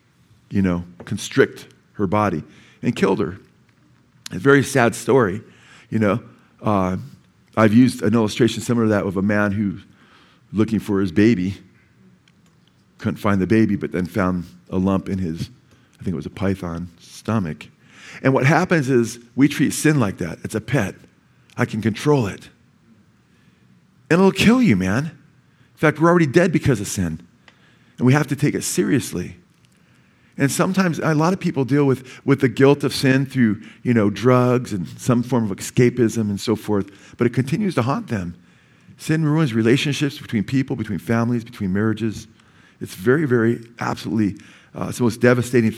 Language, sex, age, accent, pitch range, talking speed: English, male, 50-69, American, 105-140 Hz, 175 wpm